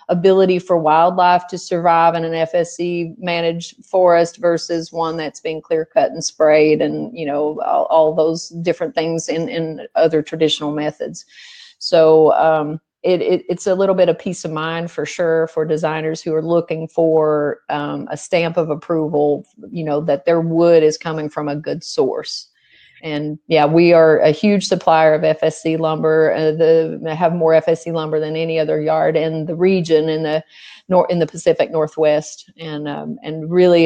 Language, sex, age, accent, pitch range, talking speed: English, female, 40-59, American, 155-170 Hz, 175 wpm